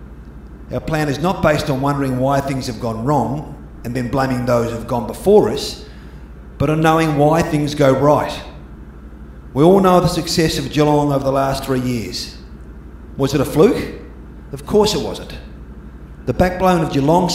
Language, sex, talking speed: English, male, 180 wpm